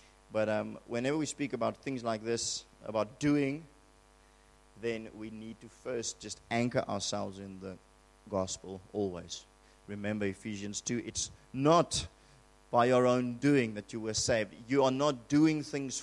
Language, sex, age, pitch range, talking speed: English, male, 30-49, 100-130 Hz, 155 wpm